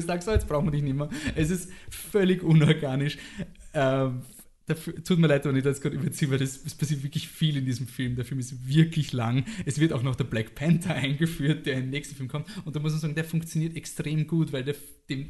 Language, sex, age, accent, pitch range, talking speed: German, male, 20-39, German, 130-160 Hz, 240 wpm